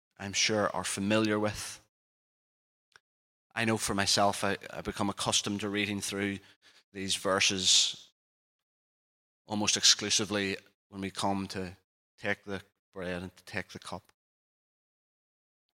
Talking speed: 120 wpm